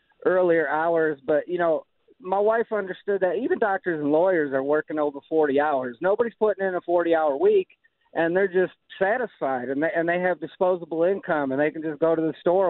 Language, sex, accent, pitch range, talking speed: English, male, American, 160-195 Hz, 210 wpm